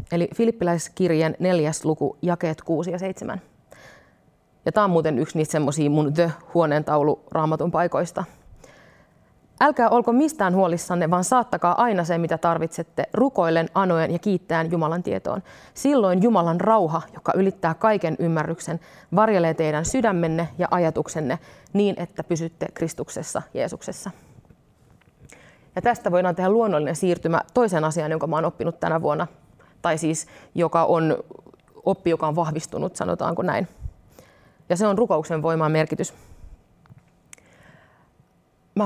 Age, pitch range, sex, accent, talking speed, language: 30-49, 155-185 Hz, female, native, 130 wpm, Finnish